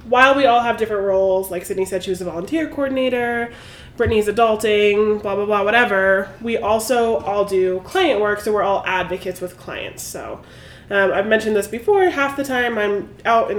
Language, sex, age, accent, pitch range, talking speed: English, female, 20-39, American, 200-240 Hz, 195 wpm